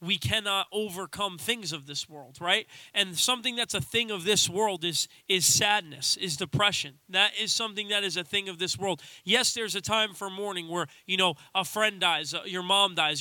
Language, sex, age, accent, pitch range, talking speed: English, male, 20-39, American, 180-215 Hz, 215 wpm